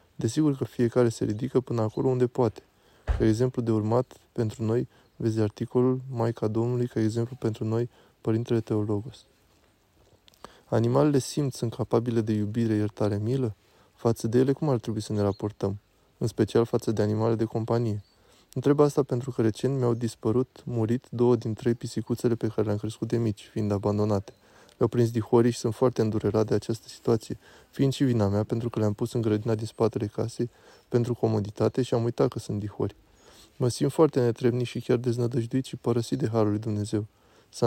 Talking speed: 180 wpm